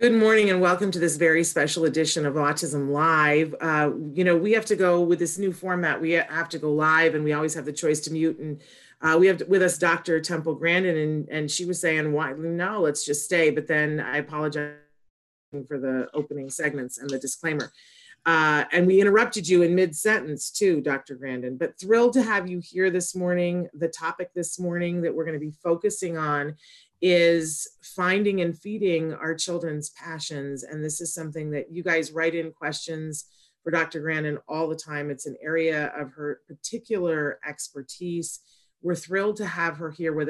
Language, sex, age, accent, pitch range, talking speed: English, female, 30-49, American, 150-175 Hz, 195 wpm